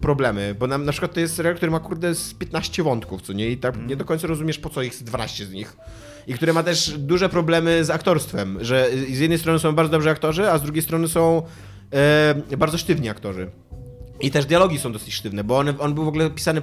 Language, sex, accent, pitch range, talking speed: Polish, male, native, 125-175 Hz, 240 wpm